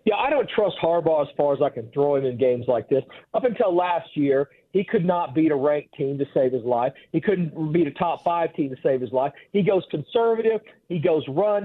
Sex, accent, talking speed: male, American, 240 wpm